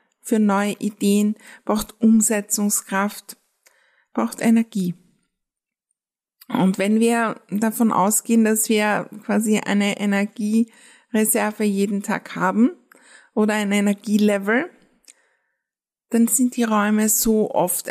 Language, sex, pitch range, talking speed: German, female, 195-230 Hz, 95 wpm